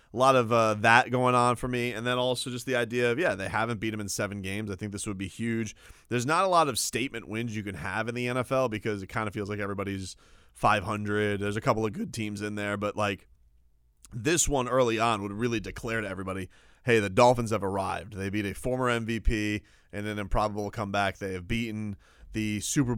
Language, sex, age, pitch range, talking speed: English, male, 30-49, 100-125 Hz, 230 wpm